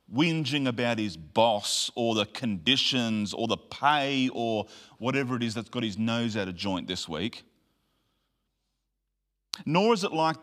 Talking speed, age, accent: 155 wpm, 40-59, Australian